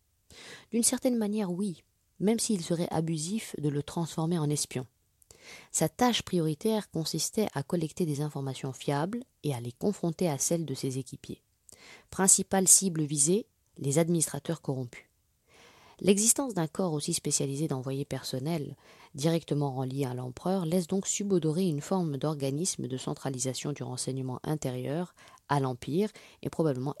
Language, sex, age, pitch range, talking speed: French, female, 20-39, 135-180 Hz, 140 wpm